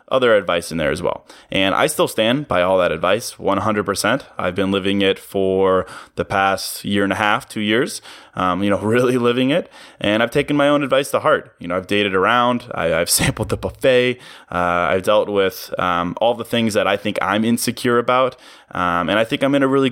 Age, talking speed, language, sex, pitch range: 20-39, 220 wpm, English, male, 95-120 Hz